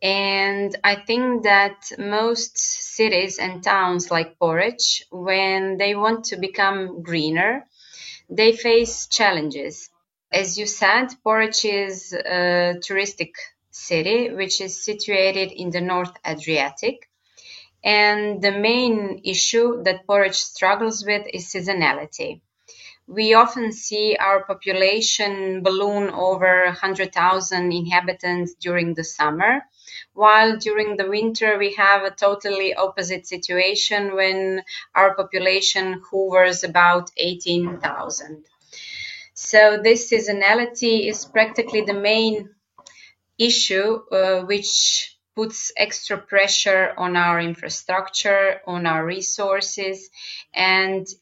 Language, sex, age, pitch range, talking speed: English, female, 20-39, 185-215 Hz, 110 wpm